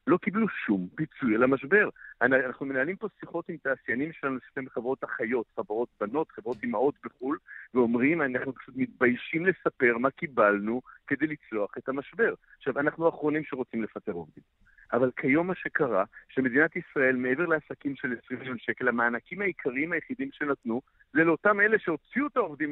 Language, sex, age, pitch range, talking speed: Hebrew, male, 50-69, 125-175 Hz, 155 wpm